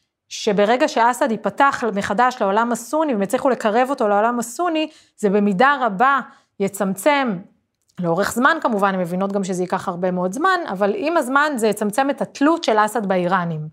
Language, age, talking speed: Hebrew, 30-49, 160 wpm